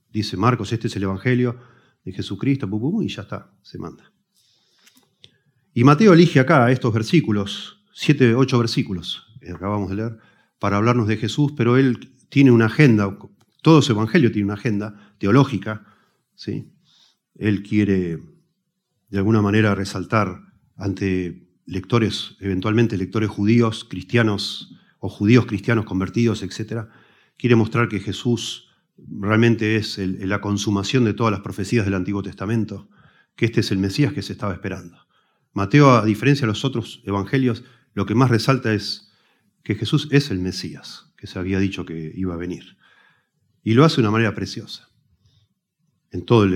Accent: Argentinian